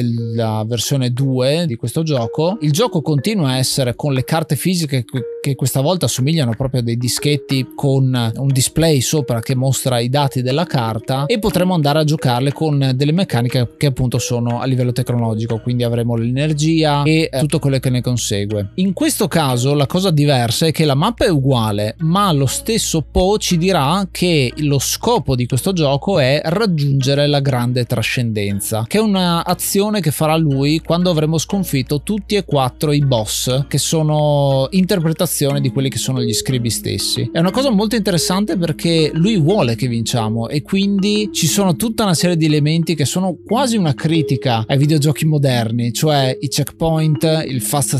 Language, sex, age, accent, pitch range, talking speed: Italian, male, 20-39, native, 130-165 Hz, 175 wpm